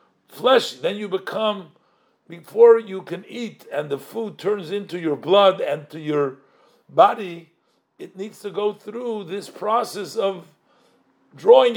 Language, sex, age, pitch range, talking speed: English, male, 50-69, 165-215 Hz, 145 wpm